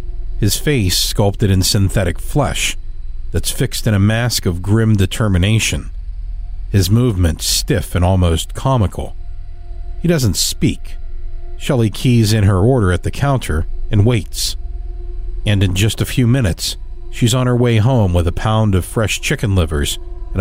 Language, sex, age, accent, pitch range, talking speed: English, male, 50-69, American, 85-115 Hz, 155 wpm